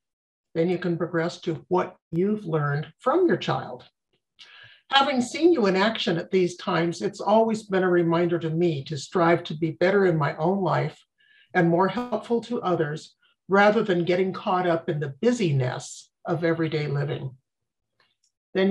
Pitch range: 165-205 Hz